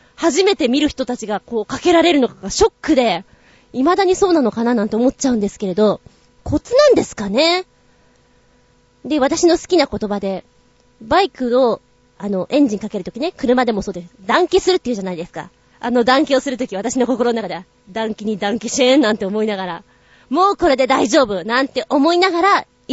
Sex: female